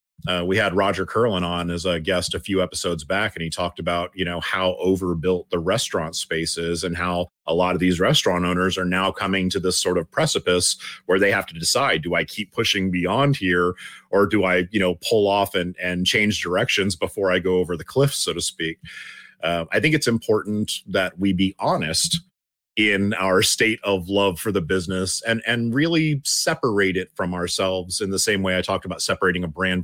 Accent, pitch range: American, 90-105 Hz